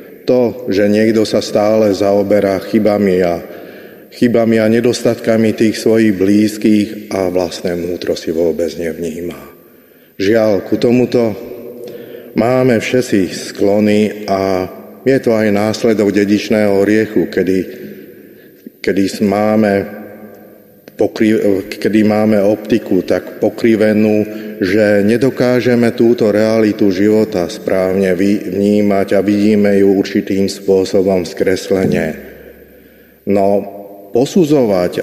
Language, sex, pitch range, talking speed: Slovak, male, 100-115 Hz, 100 wpm